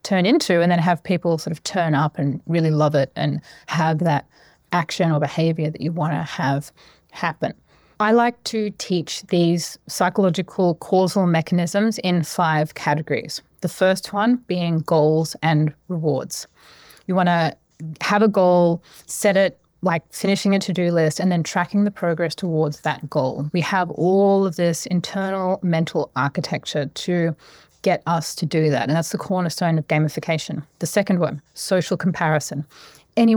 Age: 30-49